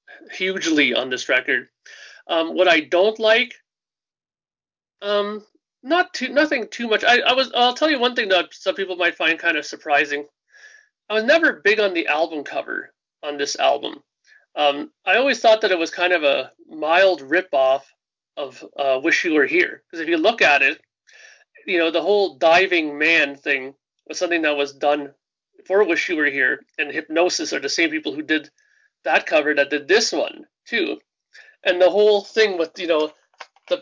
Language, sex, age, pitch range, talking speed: English, male, 30-49, 155-245 Hz, 190 wpm